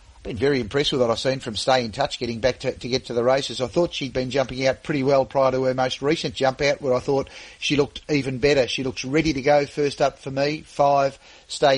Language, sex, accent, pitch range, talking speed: English, male, Australian, 130-150 Hz, 265 wpm